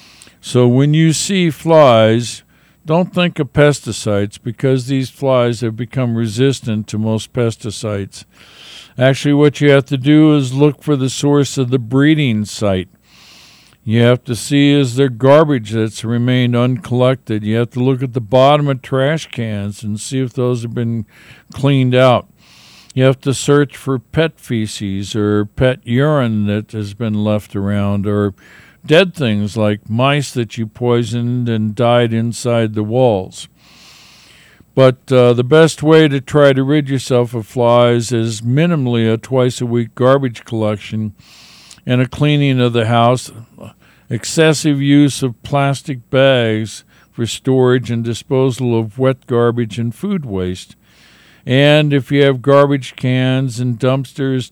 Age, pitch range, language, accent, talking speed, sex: 60-79, 115-140 Hz, English, American, 150 wpm, male